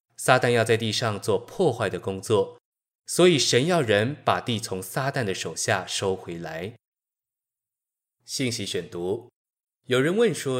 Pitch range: 95-140 Hz